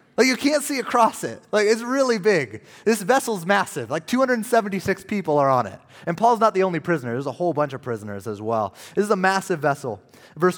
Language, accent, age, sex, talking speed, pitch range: English, American, 30-49, male, 220 wpm, 150-215 Hz